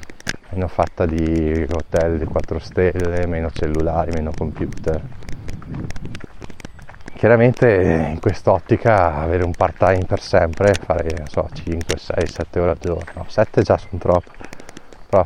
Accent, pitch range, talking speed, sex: native, 85-105 Hz, 135 wpm, male